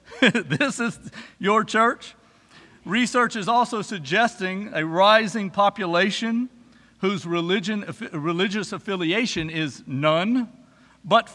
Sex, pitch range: male, 175-230 Hz